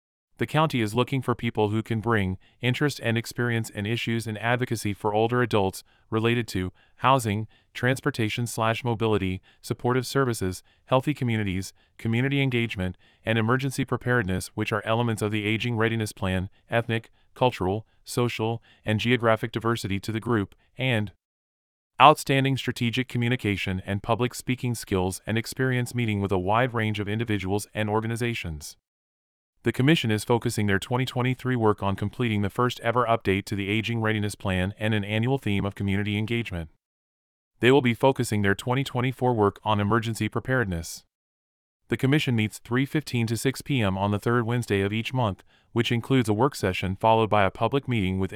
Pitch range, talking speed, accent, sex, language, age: 100-125 Hz, 160 wpm, American, male, English, 30-49